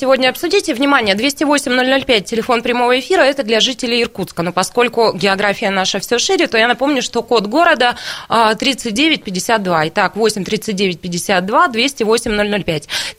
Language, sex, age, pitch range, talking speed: Russian, female, 20-39, 205-265 Hz, 120 wpm